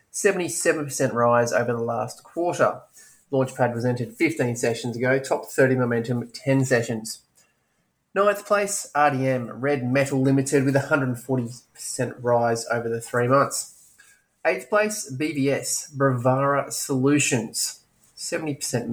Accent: Australian